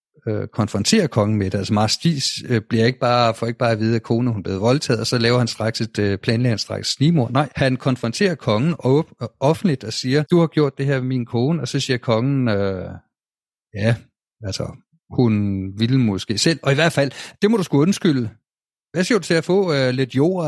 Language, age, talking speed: Danish, 50-69, 230 wpm